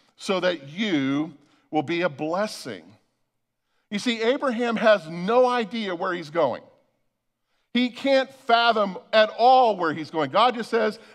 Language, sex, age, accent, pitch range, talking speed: English, male, 50-69, American, 160-225 Hz, 145 wpm